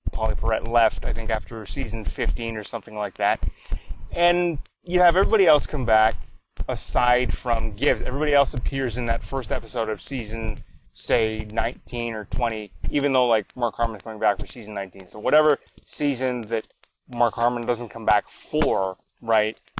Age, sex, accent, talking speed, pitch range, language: 20-39, male, American, 170 wpm, 115-135 Hz, English